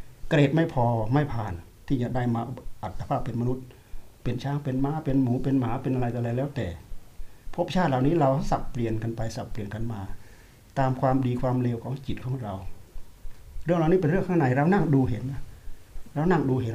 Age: 60-79